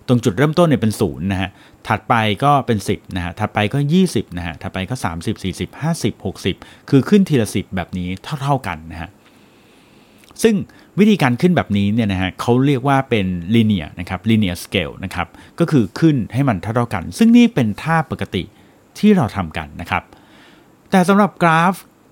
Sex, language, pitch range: male, Thai, 100-145 Hz